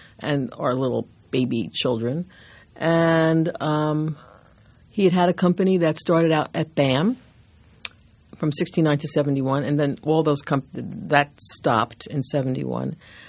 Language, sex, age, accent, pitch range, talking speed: English, female, 60-79, American, 140-160 Hz, 135 wpm